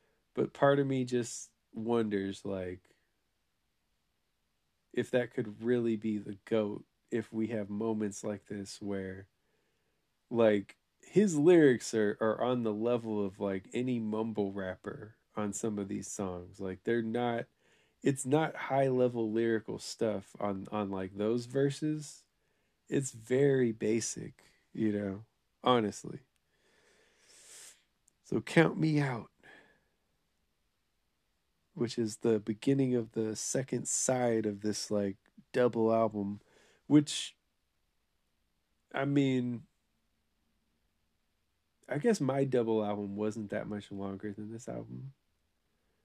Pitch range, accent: 100-130 Hz, American